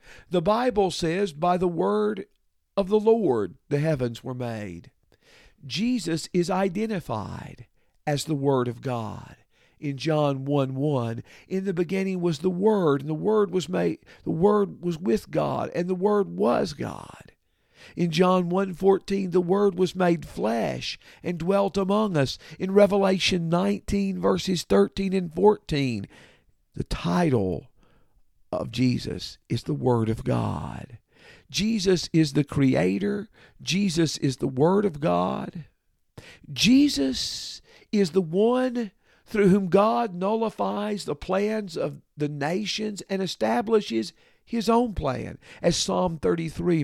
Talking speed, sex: 135 wpm, male